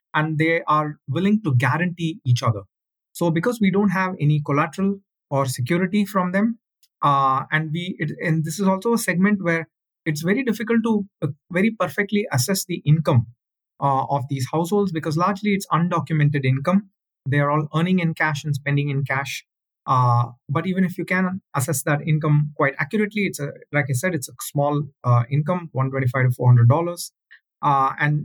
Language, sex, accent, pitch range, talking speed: English, male, Indian, 135-175 Hz, 175 wpm